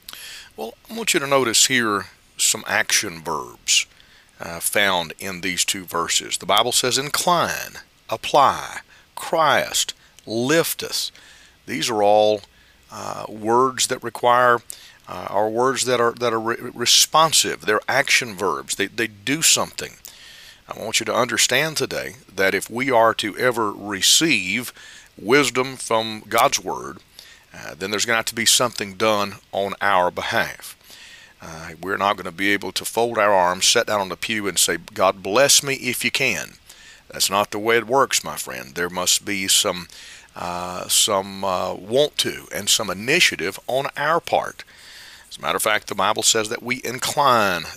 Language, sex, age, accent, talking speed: English, male, 40-59, American, 170 wpm